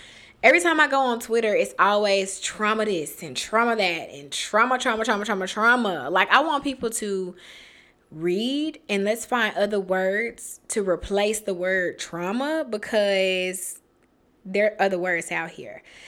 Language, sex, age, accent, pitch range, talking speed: English, female, 20-39, American, 185-255 Hz, 160 wpm